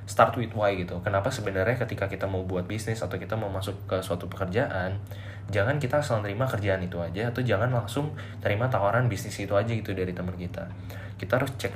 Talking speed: 205 wpm